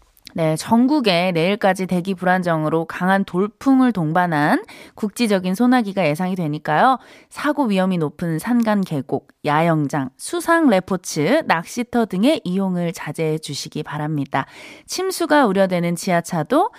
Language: Korean